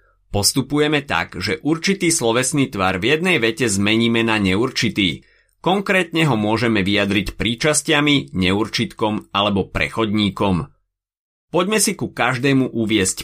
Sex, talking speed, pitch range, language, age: male, 115 wpm, 95-140 Hz, Slovak, 30-49